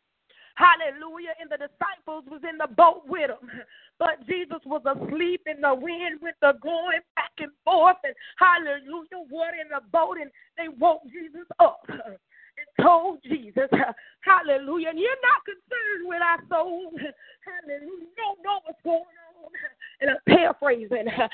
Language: English